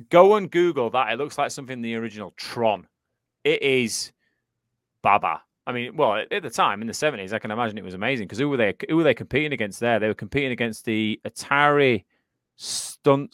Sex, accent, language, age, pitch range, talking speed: male, British, English, 30-49, 100-140 Hz, 205 wpm